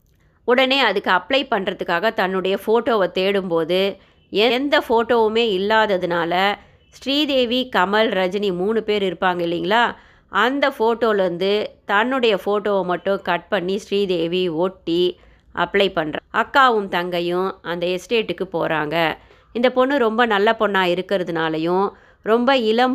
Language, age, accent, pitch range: Tamil, 30-49, native, 180-225 Hz